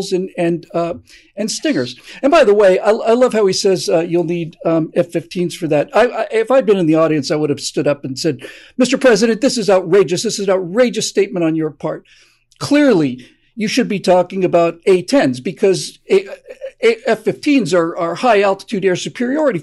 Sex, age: male, 50-69